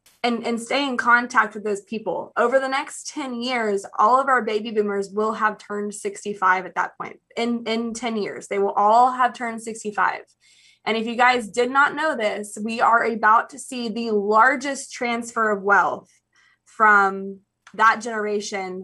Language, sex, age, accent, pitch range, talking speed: English, female, 20-39, American, 200-235 Hz, 180 wpm